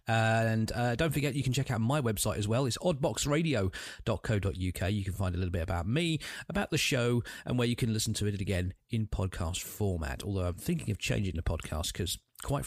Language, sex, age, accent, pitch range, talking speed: English, male, 40-59, British, 95-135 Hz, 220 wpm